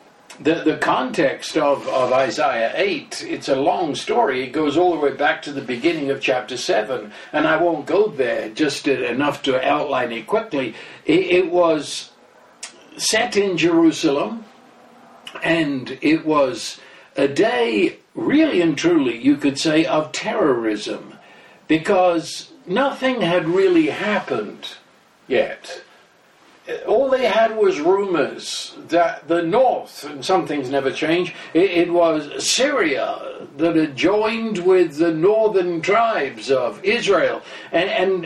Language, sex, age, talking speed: English, male, 60-79, 135 wpm